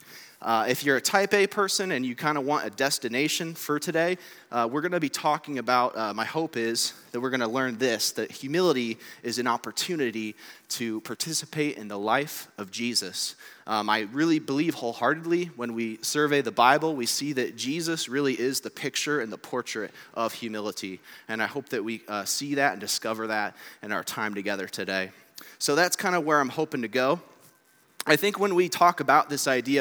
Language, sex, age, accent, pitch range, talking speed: English, male, 30-49, American, 115-155 Hz, 205 wpm